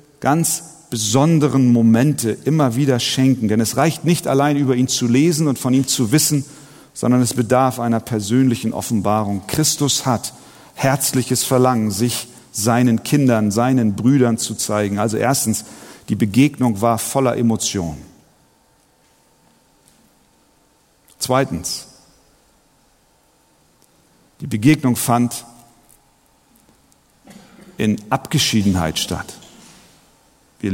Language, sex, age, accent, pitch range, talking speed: German, male, 40-59, German, 110-140 Hz, 100 wpm